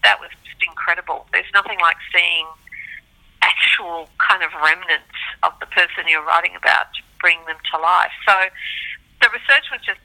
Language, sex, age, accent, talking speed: English, female, 50-69, Australian, 165 wpm